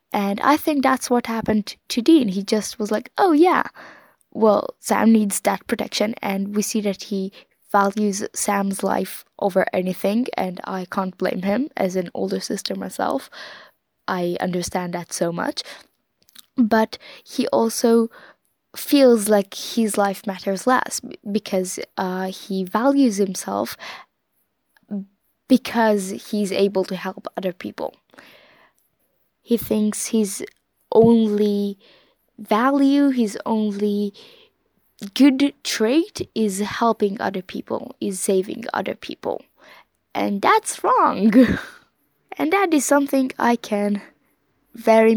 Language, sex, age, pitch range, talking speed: English, female, 10-29, 195-240 Hz, 120 wpm